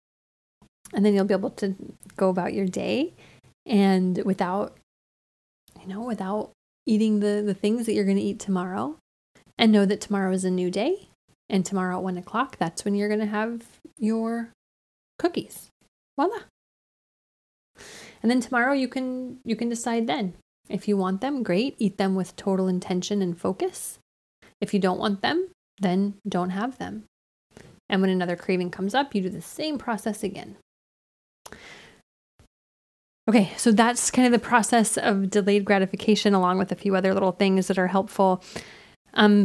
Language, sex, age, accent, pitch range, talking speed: English, female, 20-39, American, 190-230 Hz, 165 wpm